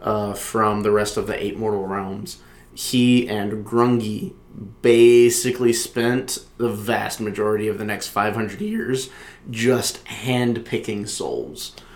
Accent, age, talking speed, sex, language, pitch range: American, 30-49, 125 wpm, male, English, 100-115 Hz